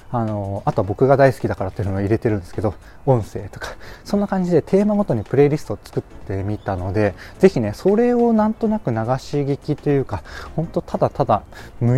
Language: Japanese